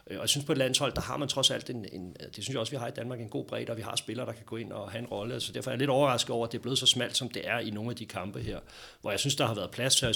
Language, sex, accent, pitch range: Danish, male, native, 110-135 Hz